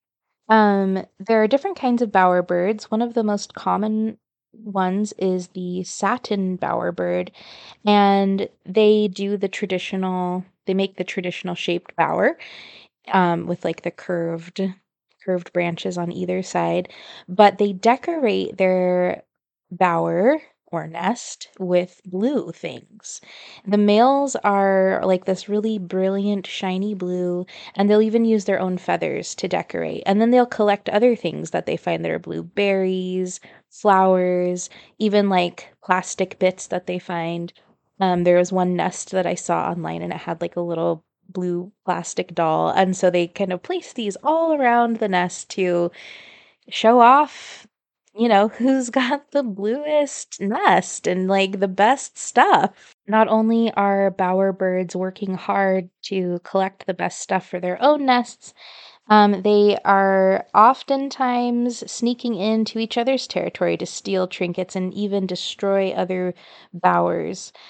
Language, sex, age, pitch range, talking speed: English, female, 20-39, 180-220 Hz, 145 wpm